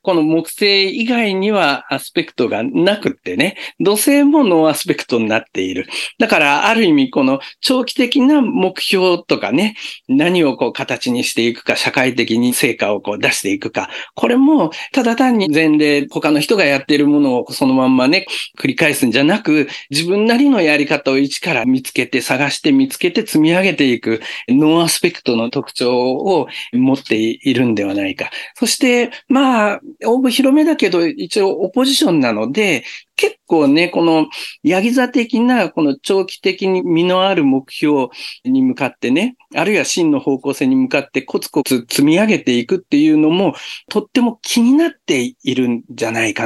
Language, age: Japanese, 50-69